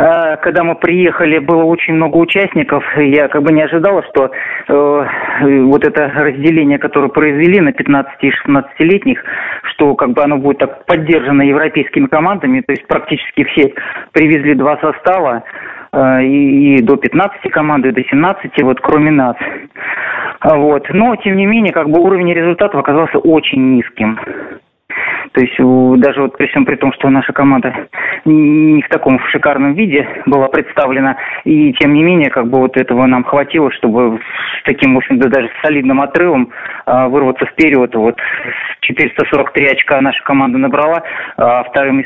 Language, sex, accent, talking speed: Russian, male, native, 160 wpm